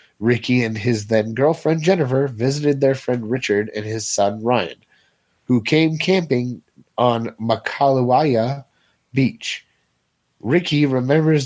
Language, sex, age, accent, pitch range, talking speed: English, male, 30-49, American, 115-145 Hz, 115 wpm